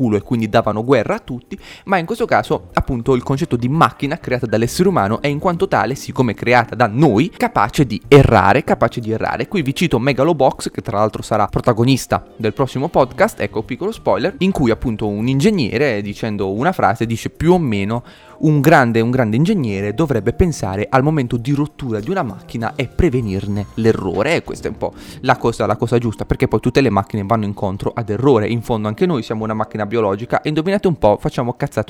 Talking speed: 205 wpm